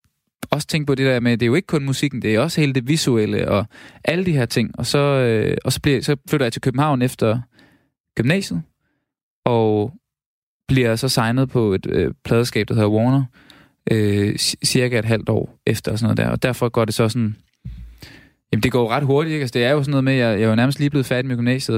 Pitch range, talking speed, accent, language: 110-135 Hz, 245 wpm, native, Danish